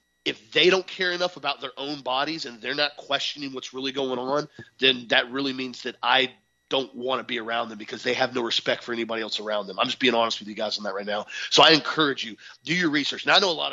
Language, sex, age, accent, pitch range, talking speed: English, male, 30-49, American, 115-140 Hz, 270 wpm